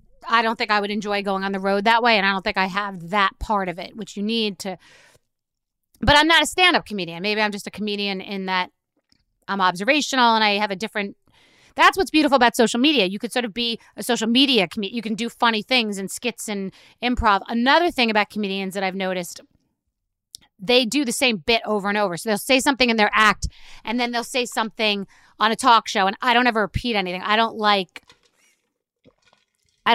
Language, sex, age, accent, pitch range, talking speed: English, female, 30-49, American, 200-240 Hz, 220 wpm